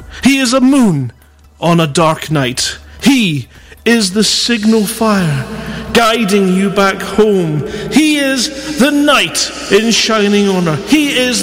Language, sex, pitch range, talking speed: English, male, 150-245 Hz, 135 wpm